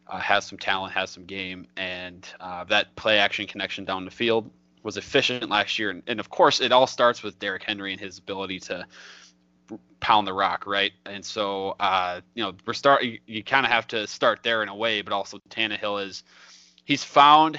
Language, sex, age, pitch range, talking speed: English, male, 20-39, 95-115 Hz, 205 wpm